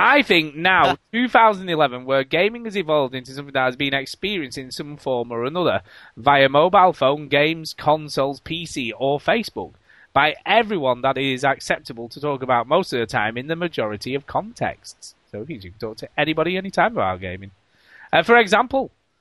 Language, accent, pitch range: English, British, 130-165 Hz